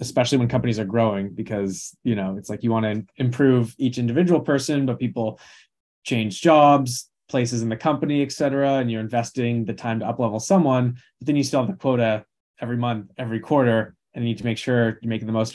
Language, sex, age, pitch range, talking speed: English, male, 20-39, 110-135 Hz, 215 wpm